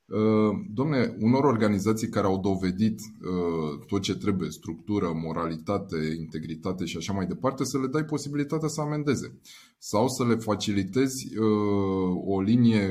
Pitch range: 95-140 Hz